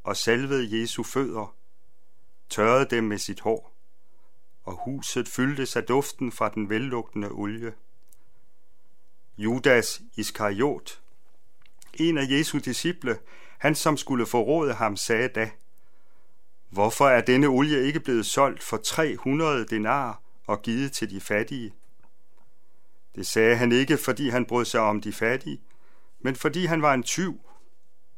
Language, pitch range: Danish, 105-135 Hz